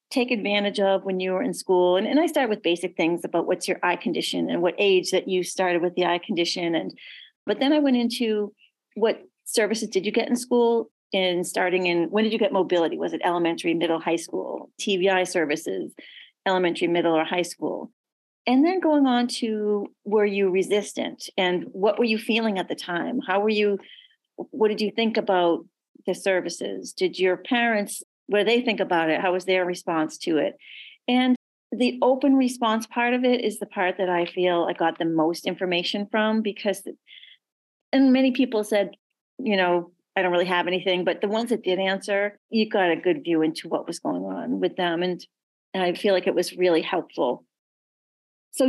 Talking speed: 200 wpm